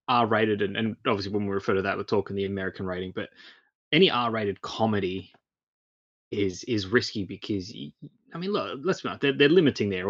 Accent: Australian